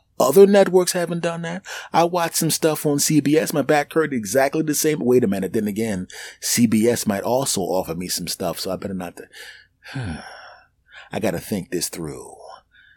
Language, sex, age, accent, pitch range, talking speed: English, male, 30-49, American, 90-140 Hz, 180 wpm